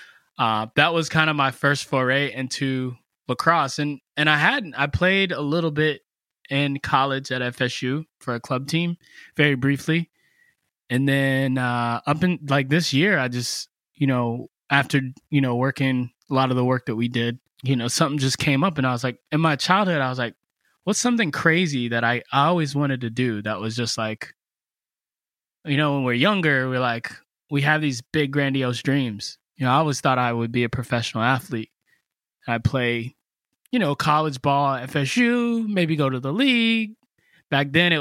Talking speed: 195 wpm